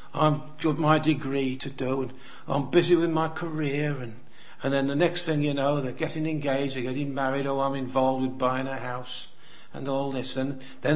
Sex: male